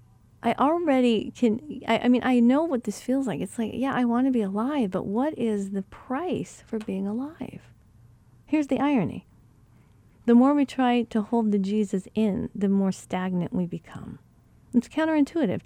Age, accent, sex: 40-59, American, female